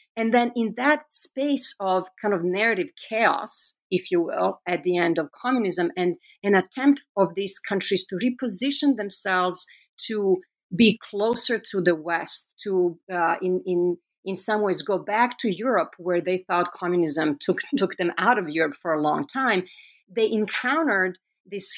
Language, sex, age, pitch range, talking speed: English, female, 50-69, 180-245 Hz, 170 wpm